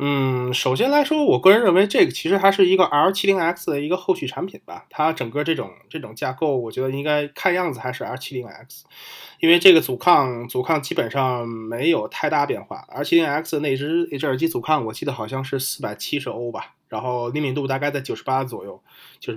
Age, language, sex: 20-39, Chinese, male